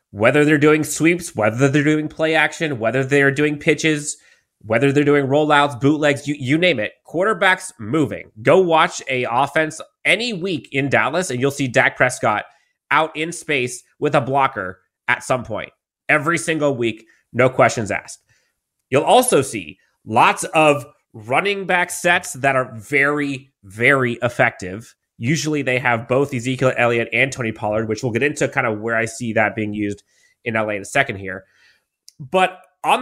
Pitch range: 125-155 Hz